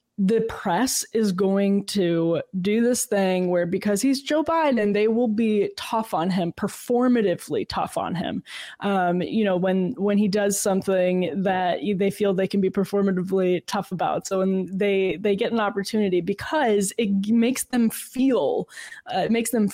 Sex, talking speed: female, 170 wpm